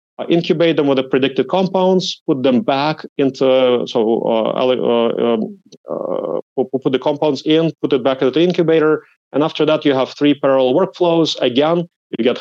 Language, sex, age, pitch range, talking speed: English, male, 30-49, 125-160 Hz, 185 wpm